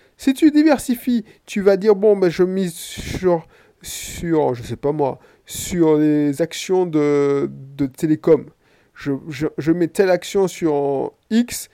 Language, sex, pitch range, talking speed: French, male, 145-220 Hz, 160 wpm